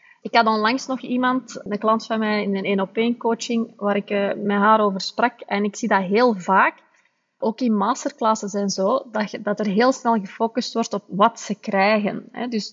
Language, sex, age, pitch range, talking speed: Dutch, female, 30-49, 205-255 Hz, 195 wpm